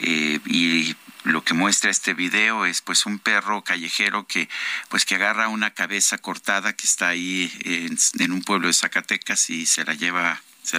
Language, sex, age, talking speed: Spanish, male, 50-69, 185 wpm